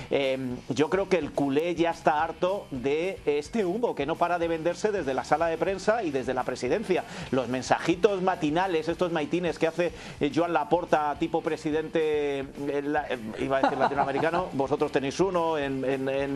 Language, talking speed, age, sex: Spanish, 175 wpm, 40-59, male